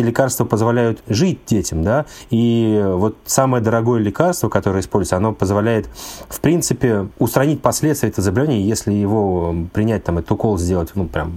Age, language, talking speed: 30-49, Russian, 155 wpm